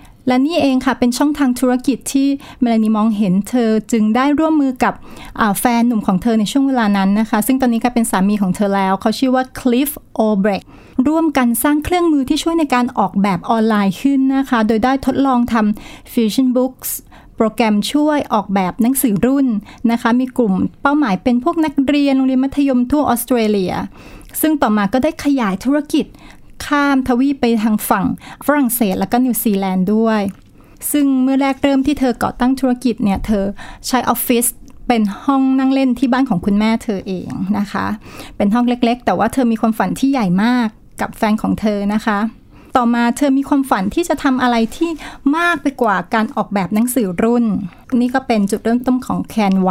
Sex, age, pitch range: female, 30-49, 215-270 Hz